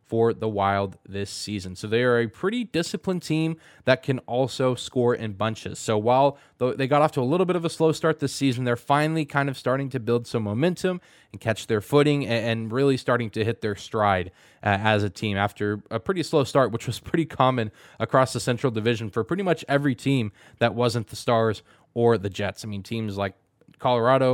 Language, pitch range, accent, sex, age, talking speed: English, 110-140 Hz, American, male, 20-39, 215 wpm